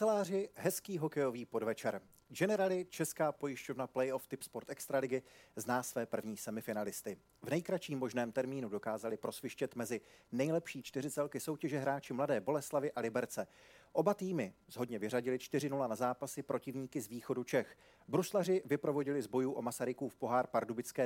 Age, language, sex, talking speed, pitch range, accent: 40-59, Czech, male, 140 wpm, 115-155 Hz, native